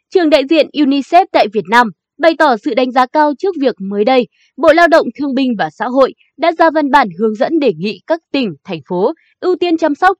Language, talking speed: Vietnamese, 240 wpm